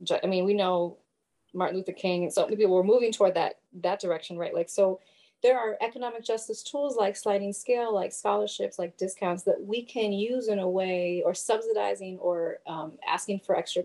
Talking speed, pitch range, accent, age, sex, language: 200 wpm, 180-225 Hz, American, 30-49, female, English